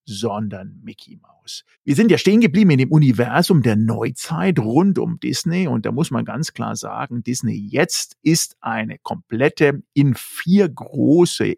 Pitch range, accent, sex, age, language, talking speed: 115-155 Hz, German, male, 50-69, German, 160 wpm